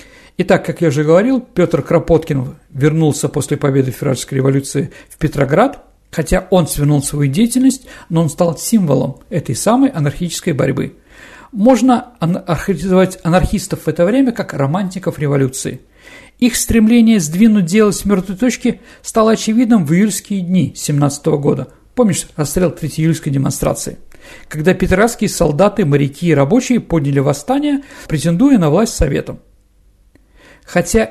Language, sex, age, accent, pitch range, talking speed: Russian, male, 50-69, native, 145-210 Hz, 130 wpm